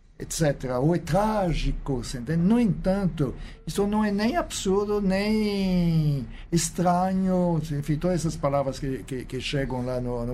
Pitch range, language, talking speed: 135-185 Hz, Portuguese, 140 wpm